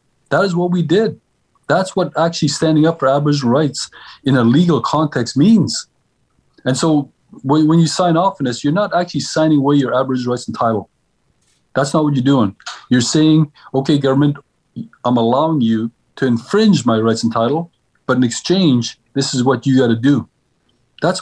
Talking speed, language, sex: 185 wpm, English, male